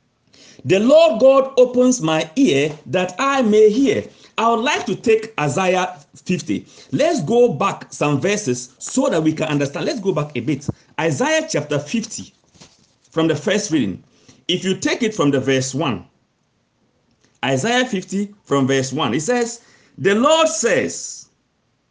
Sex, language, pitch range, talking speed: male, English, 145-235 Hz, 155 wpm